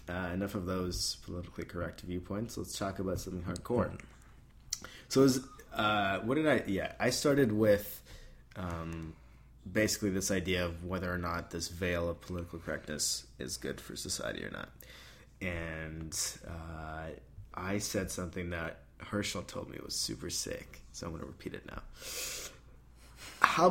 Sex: male